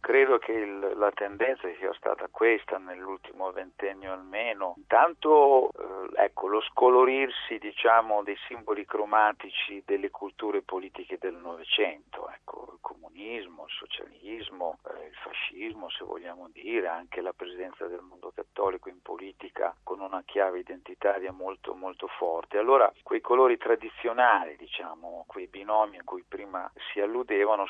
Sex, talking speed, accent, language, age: male, 135 wpm, native, Italian, 50-69